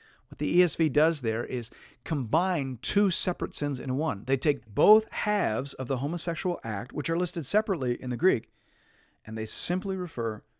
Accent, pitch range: American, 115-155 Hz